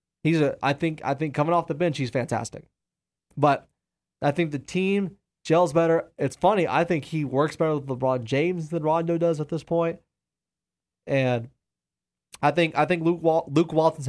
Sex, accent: male, American